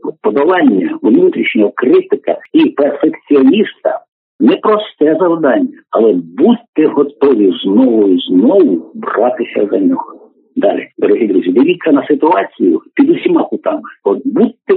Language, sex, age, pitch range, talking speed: Ukrainian, male, 50-69, 260-370 Hz, 110 wpm